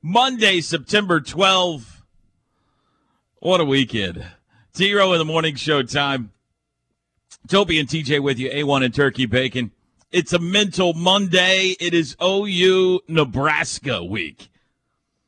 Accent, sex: American, male